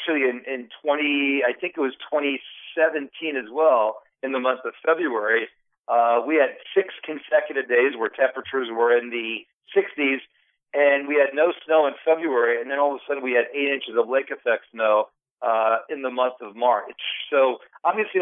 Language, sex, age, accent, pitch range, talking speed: English, male, 40-59, American, 130-165 Hz, 180 wpm